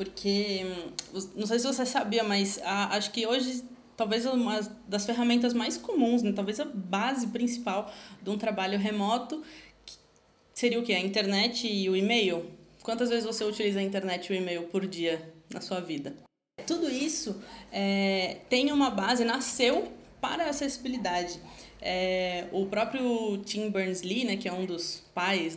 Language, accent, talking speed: Portuguese, Brazilian, 160 wpm